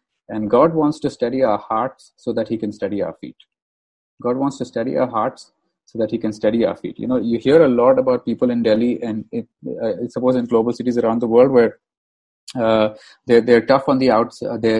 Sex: male